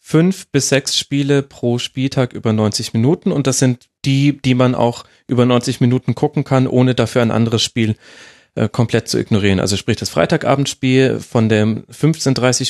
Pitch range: 110-135 Hz